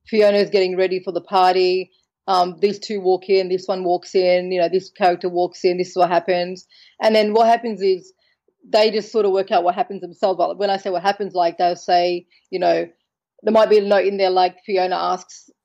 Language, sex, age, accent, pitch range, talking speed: English, female, 30-49, Australian, 180-200 Hz, 235 wpm